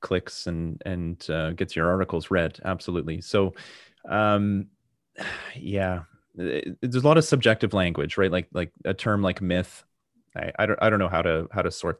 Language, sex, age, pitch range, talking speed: English, male, 30-49, 90-110 Hz, 180 wpm